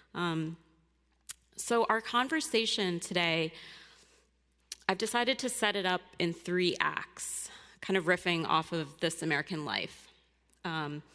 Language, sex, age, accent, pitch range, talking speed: English, female, 30-49, American, 155-195 Hz, 125 wpm